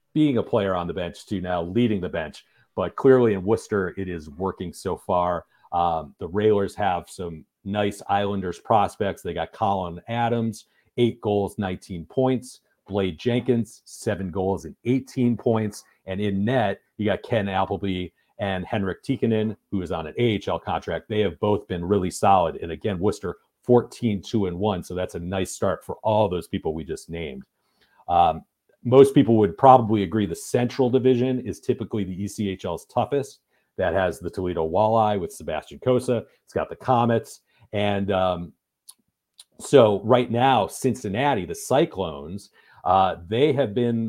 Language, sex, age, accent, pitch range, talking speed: English, male, 40-59, American, 95-120 Hz, 165 wpm